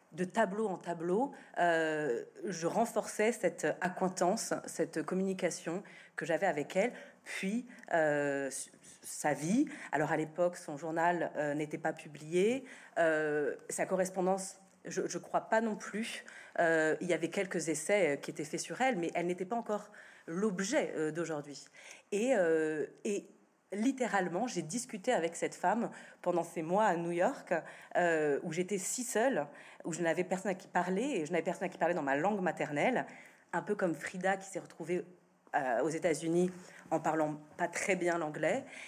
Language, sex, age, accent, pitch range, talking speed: French, female, 30-49, French, 165-210 Hz, 170 wpm